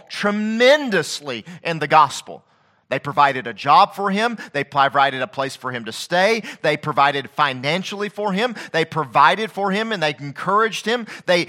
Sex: male